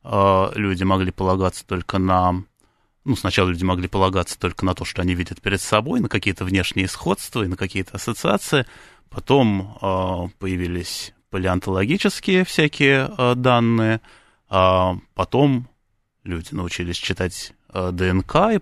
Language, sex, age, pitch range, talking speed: Russian, male, 20-39, 95-115 Hz, 120 wpm